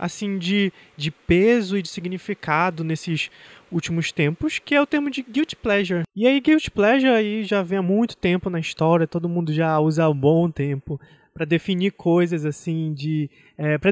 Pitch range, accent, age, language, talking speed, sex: 155-200 Hz, Brazilian, 20-39, Portuguese, 190 wpm, male